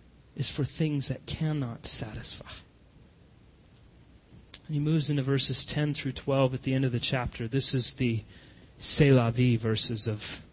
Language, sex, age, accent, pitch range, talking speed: English, male, 30-49, American, 120-155 Hz, 160 wpm